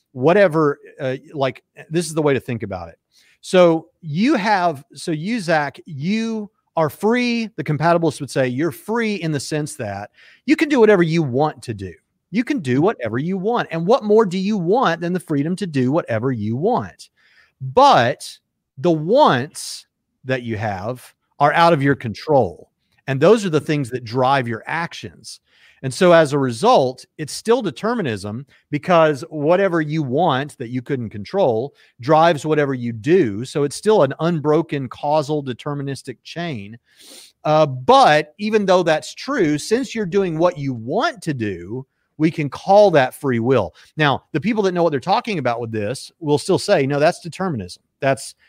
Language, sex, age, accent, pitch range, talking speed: English, male, 40-59, American, 125-170 Hz, 180 wpm